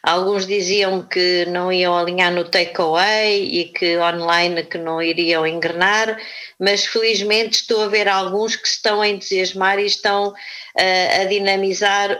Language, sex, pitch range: Portuguese, female, 175-225 Hz